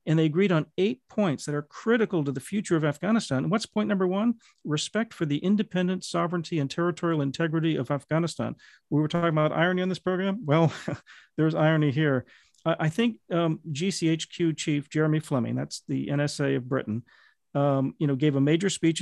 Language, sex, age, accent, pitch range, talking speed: English, male, 40-59, American, 145-190 Hz, 195 wpm